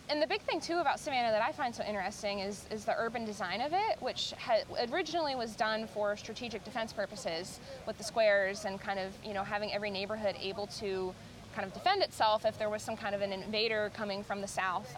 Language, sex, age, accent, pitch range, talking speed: English, female, 20-39, American, 200-225 Hz, 230 wpm